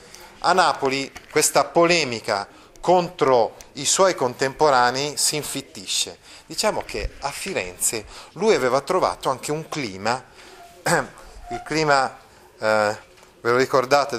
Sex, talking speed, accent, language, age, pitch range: male, 110 wpm, native, Italian, 30-49, 115-155 Hz